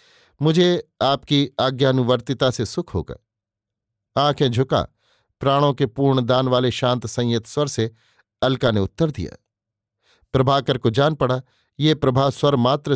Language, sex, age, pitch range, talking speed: Hindi, male, 50-69, 115-140 Hz, 135 wpm